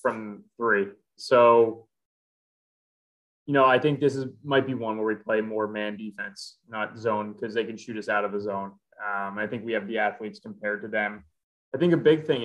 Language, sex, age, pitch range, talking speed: English, male, 20-39, 105-125 Hz, 210 wpm